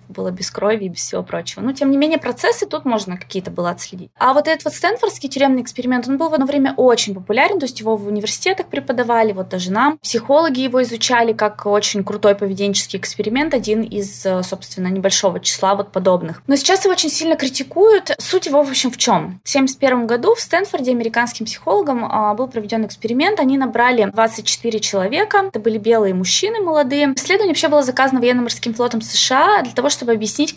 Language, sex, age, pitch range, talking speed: Russian, female, 20-39, 205-275 Hz, 190 wpm